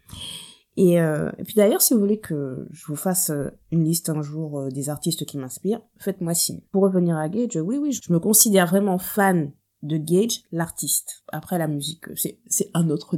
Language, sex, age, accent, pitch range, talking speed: French, female, 20-39, French, 165-215 Hz, 195 wpm